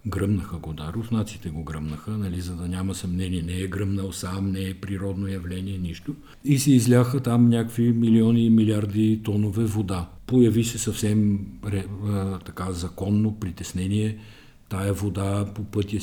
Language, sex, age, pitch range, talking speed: Bulgarian, male, 50-69, 95-115 Hz, 150 wpm